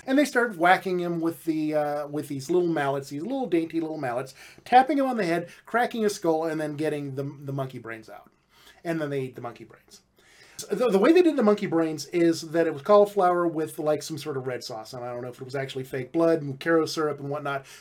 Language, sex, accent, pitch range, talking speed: English, male, American, 155-210 Hz, 255 wpm